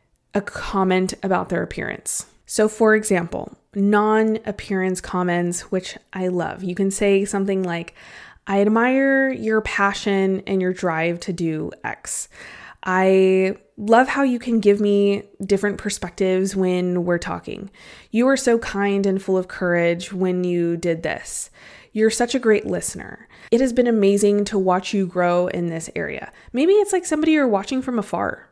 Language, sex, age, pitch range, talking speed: English, female, 20-39, 185-220 Hz, 160 wpm